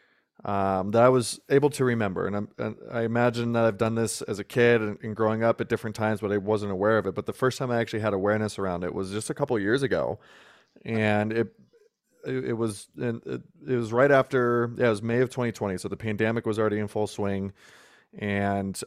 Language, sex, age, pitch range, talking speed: English, male, 20-39, 105-120 Hz, 240 wpm